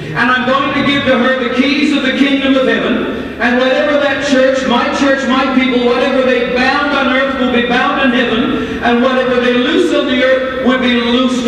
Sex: male